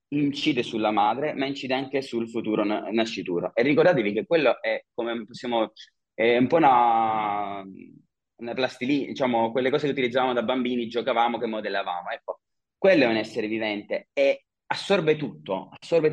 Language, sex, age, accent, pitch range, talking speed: Italian, male, 30-49, native, 115-155 Hz, 155 wpm